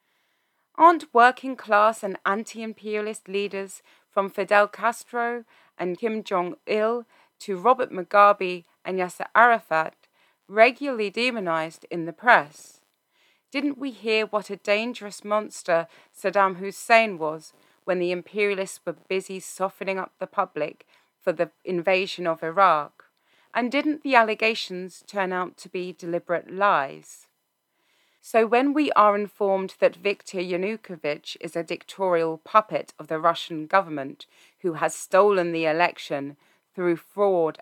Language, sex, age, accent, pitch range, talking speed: English, female, 30-49, British, 170-215 Hz, 125 wpm